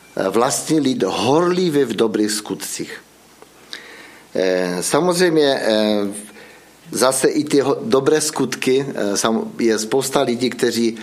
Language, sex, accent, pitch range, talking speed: Czech, male, native, 105-135 Hz, 85 wpm